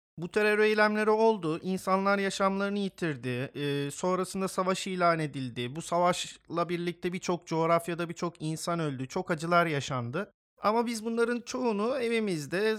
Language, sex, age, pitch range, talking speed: Turkish, male, 40-59, 155-200 Hz, 130 wpm